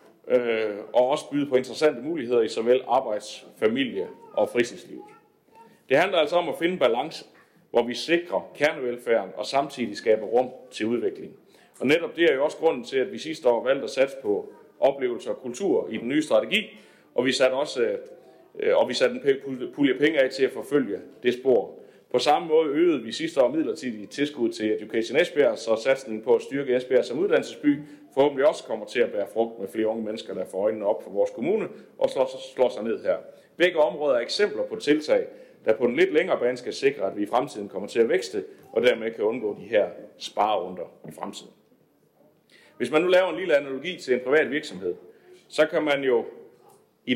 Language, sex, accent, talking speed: Danish, male, native, 205 wpm